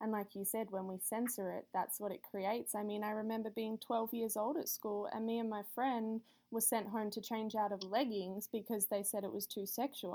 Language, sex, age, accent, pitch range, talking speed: English, female, 10-29, Australian, 200-225 Hz, 250 wpm